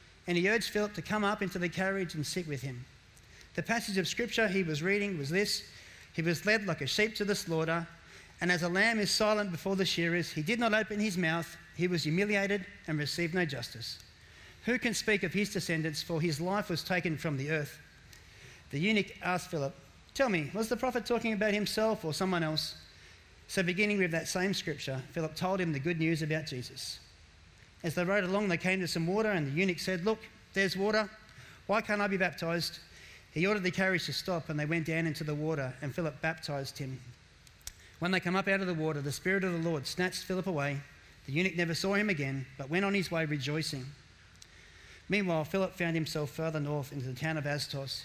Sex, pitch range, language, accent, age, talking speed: male, 140-195 Hz, English, Australian, 30-49, 215 wpm